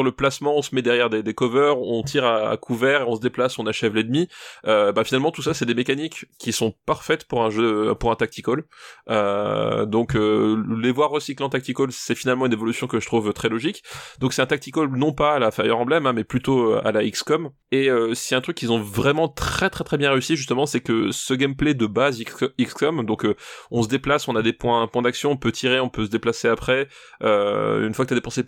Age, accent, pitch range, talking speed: 20-39, French, 115-140 Hz, 245 wpm